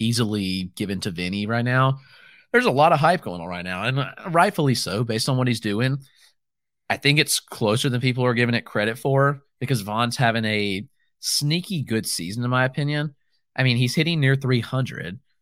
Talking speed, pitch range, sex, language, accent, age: 195 wpm, 105-140 Hz, male, English, American, 30-49